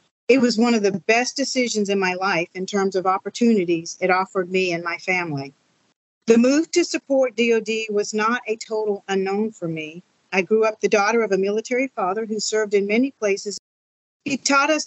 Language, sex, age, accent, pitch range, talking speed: English, female, 50-69, American, 195-245 Hz, 200 wpm